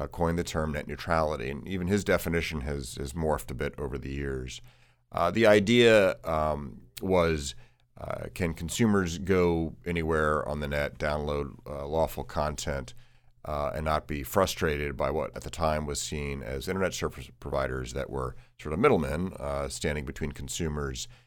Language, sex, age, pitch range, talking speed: English, male, 40-59, 70-85 Hz, 165 wpm